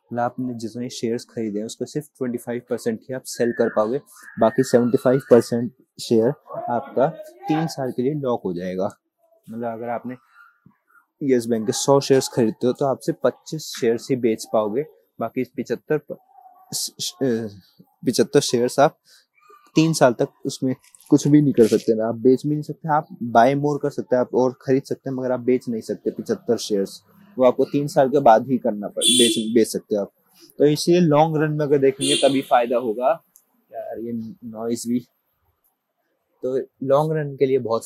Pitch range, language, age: 120-150 Hz, Hindi, 20-39